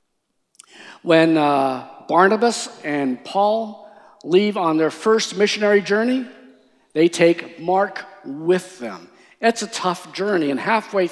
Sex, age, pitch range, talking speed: male, 50-69, 165-235 Hz, 120 wpm